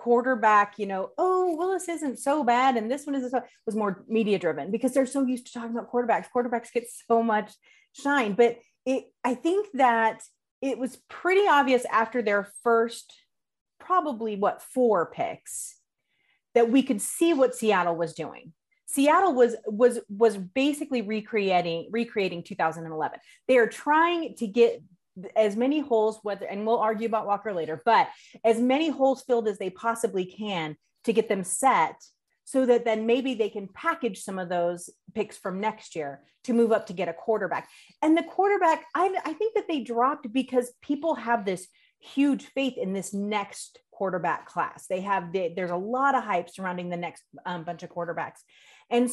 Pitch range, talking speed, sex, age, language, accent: 200-270 Hz, 180 wpm, female, 30-49, English, American